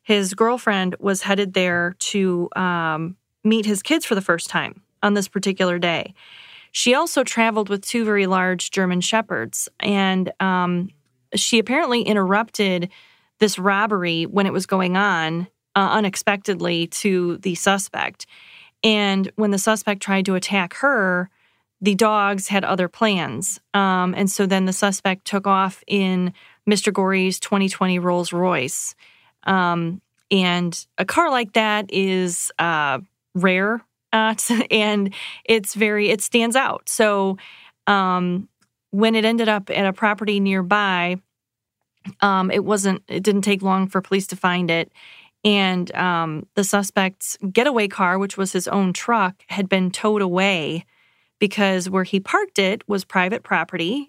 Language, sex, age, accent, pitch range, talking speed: English, female, 30-49, American, 185-210 Hz, 145 wpm